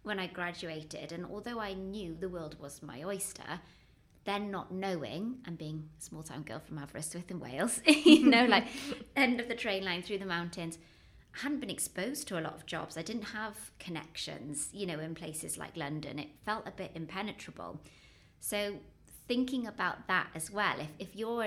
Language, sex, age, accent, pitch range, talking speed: English, female, 20-39, British, 160-200 Hz, 195 wpm